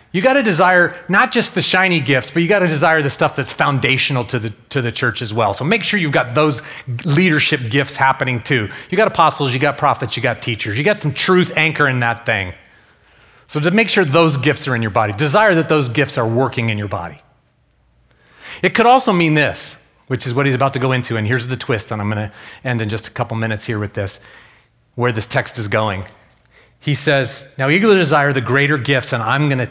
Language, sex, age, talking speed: English, male, 30-49, 230 wpm